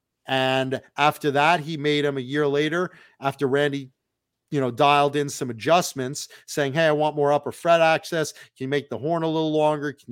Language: English